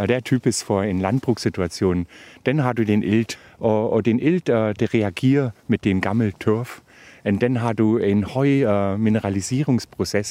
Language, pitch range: Danish, 105-135 Hz